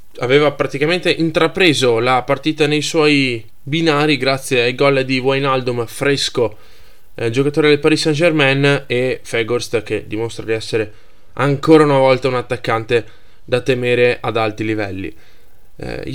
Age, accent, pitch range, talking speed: 10-29, native, 110-140 Hz, 140 wpm